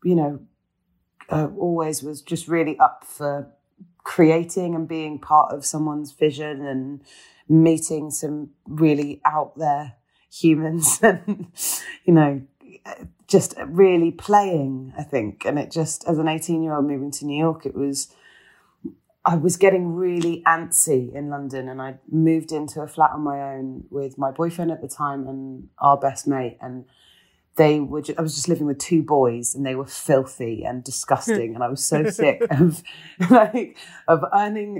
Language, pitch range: English, 140-175 Hz